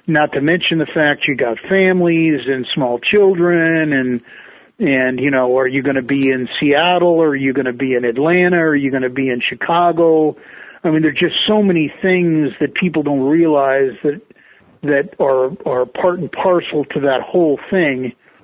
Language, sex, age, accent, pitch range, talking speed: English, male, 50-69, American, 135-180 Hz, 200 wpm